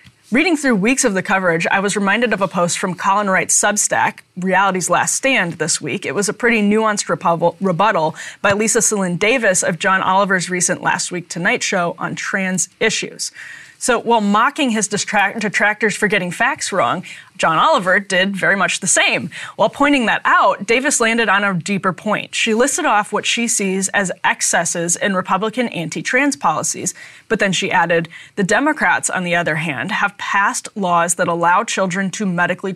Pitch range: 180-225 Hz